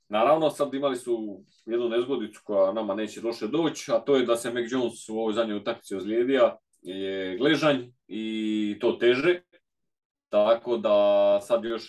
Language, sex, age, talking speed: Croatian, male, 30-49, 160 wpm